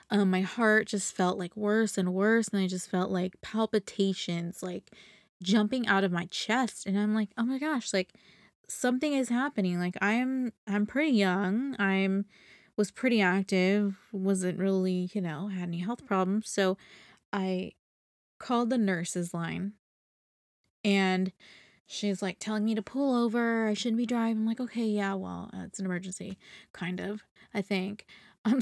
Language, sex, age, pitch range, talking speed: English, female, 20-39, 190-225 Hz, 170 wpm